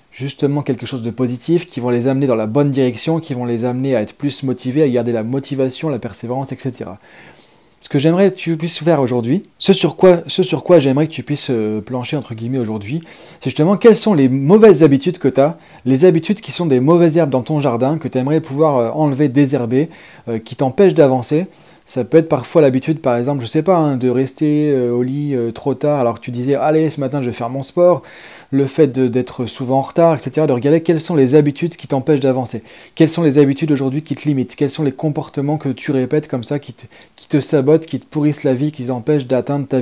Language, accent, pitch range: French, French, 130-160 Hz